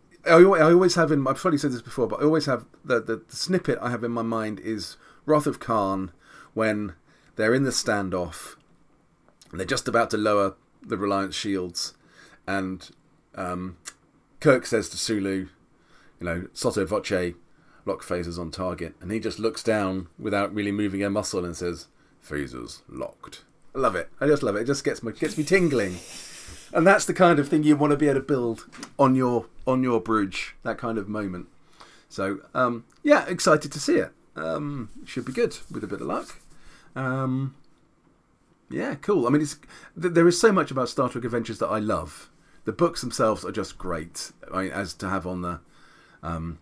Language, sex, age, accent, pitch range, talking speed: English, male, 30-49, British, 95-135 Hz, 195 wpm